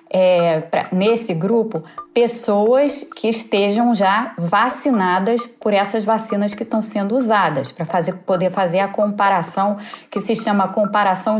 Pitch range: 185-240 Hz